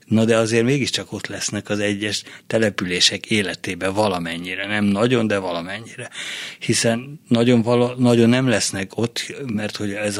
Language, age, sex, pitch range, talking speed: Hungarian, 60-79, male, 100-115 Hz, 145 wpm